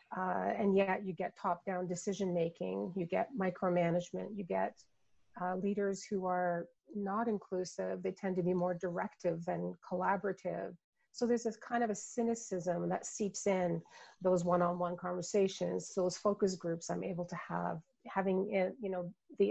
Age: 40-59